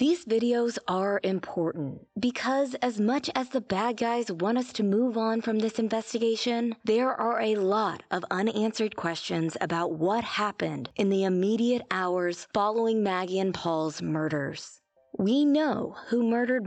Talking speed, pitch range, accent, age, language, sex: 150 wpm, 185-240 Hz, American, 20-39, English, female